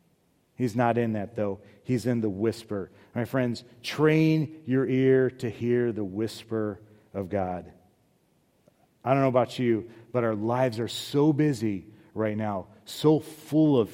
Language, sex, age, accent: English, male, 40-59, American